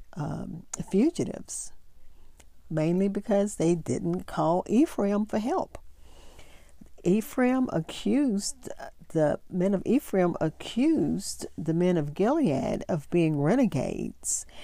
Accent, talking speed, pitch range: American, 100 wpm, 150-195 Hz